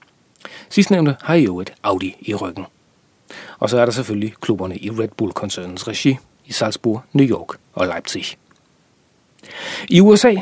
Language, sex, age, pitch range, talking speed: Danish, male, 40-59, 100-170 Hz, 150 wpm